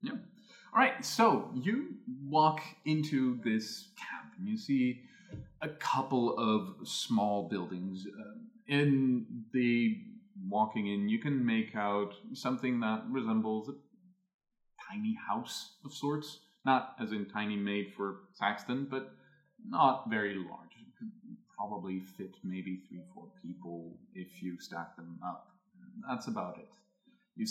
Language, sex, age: English, male, 30-49